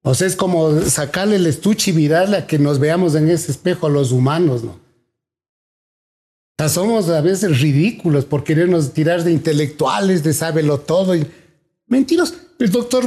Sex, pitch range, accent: male, 145-190 Hz, Mexican